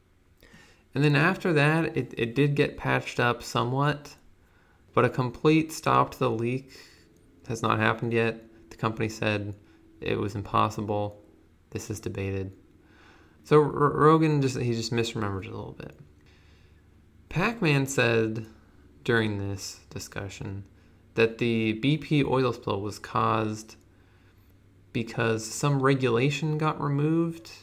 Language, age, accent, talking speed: English, 20-39, American, 130 wpm